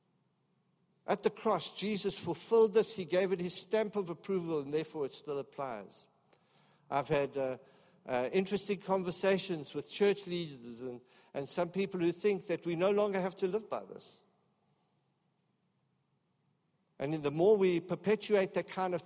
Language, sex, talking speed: English, male, 155 wpm